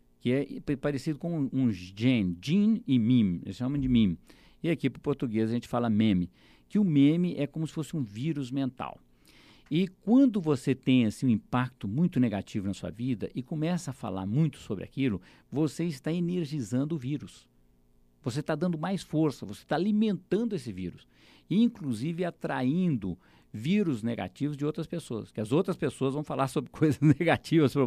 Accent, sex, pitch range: Brazilian, male, 110-160 Hz